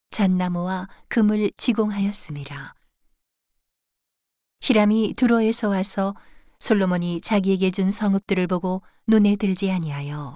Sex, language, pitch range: female, Korean, 175-205 Hz